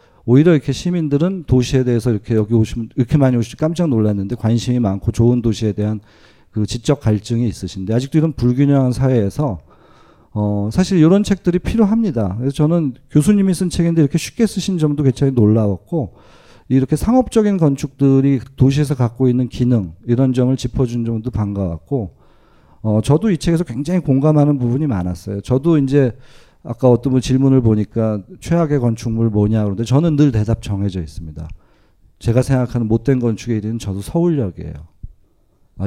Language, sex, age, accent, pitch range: Korean, male, 40-59, native, 110-155 Hz